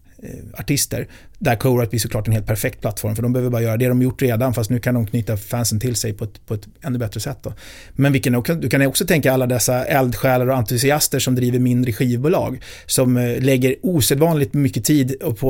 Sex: male